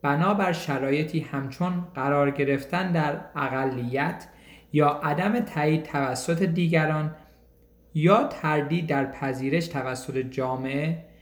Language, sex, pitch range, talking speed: Persian, male, 135-165 Hz, 95 wpm